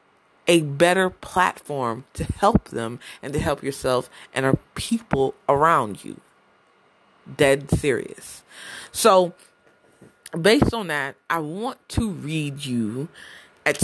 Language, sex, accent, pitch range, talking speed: English, female, American, 140-190 Hz, 115 wpm